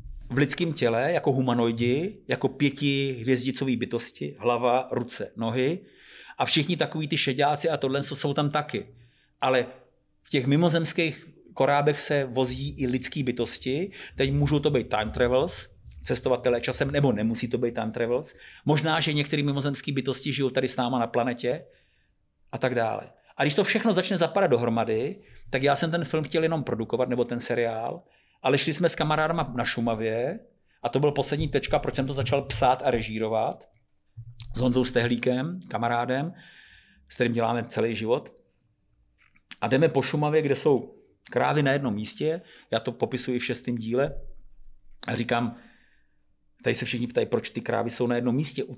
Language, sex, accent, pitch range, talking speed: Czech, male, native, 120-150 Hz, 165 wpm